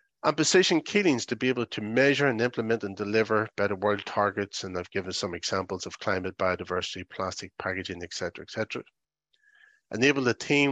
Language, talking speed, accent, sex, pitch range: English, 180 wpm, Irish, male, 105-135 Hz